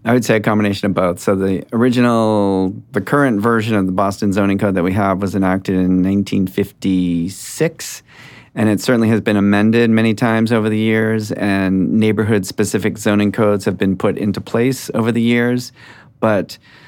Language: English